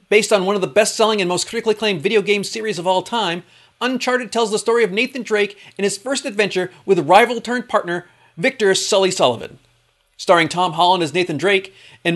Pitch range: 180-235 Hz